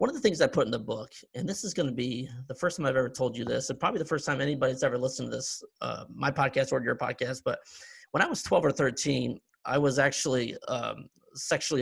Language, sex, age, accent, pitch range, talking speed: English, male, 30-49, American, 130-170 Hz, 260 wpm